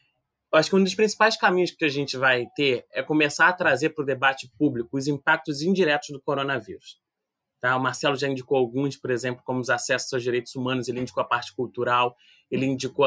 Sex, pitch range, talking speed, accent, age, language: male, 135-170 Hz, 200 wpm, Brazilian, 20-39, Portuguese